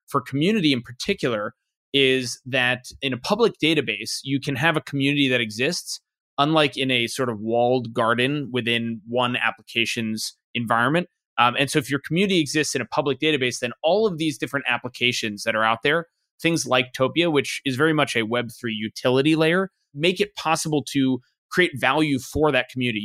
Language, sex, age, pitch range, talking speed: English, male, 20-39, 125-155 Hz, 180 wpm